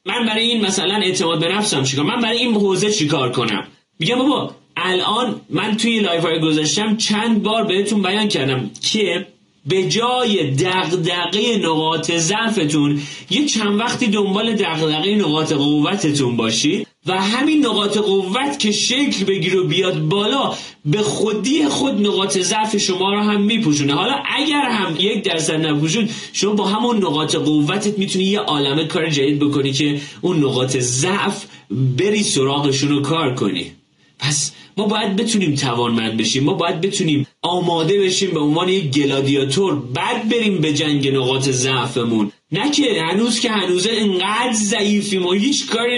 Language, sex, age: Persian, male, 30-49